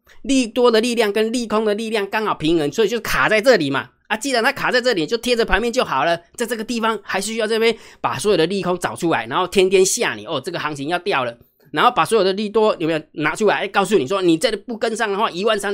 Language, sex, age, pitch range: Chinese, male, 20-39, 155-230 Hz